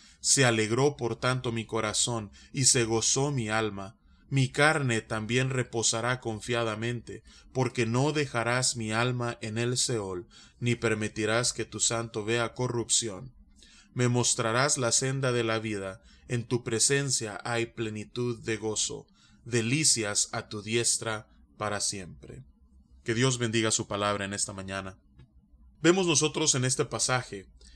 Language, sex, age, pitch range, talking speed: Spanish, male, 20-39, 110-130 Hz, 140 wpm